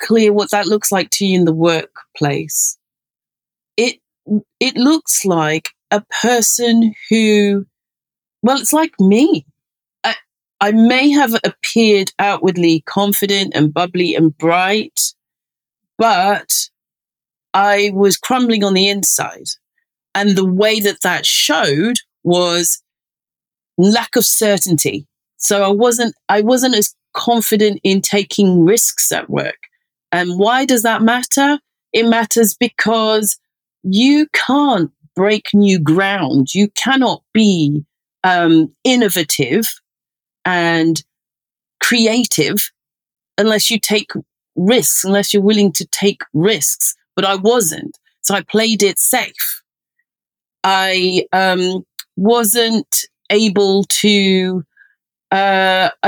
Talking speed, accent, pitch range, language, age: 110 wpm, British, 185-230 Hz, English, 40-59